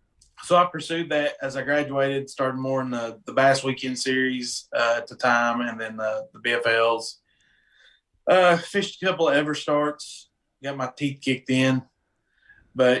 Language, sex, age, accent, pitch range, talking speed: English, male, 20-39, American, 120-145 Hz, 170 wpm